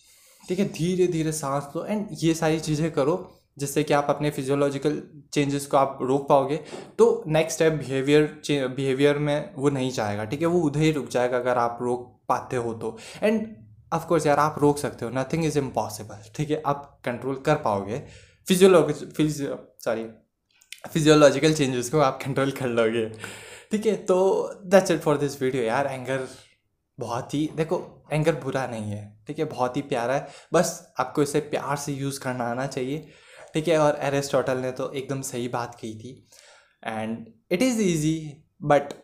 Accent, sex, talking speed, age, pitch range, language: native, male, 185 wpm, 20-39, 130-155 Hz, Hindi